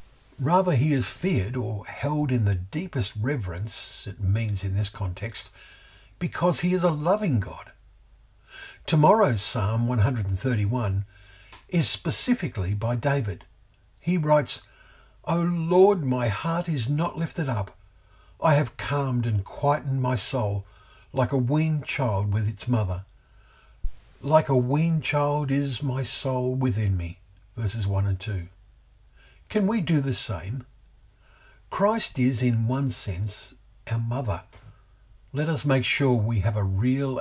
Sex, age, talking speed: male, 50-69, 135 wpm